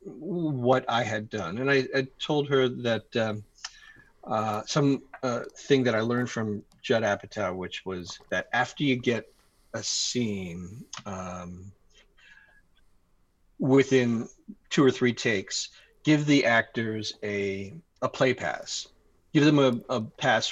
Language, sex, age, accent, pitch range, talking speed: English, male, 40-59, American, 110-135 Hz, 135 wpm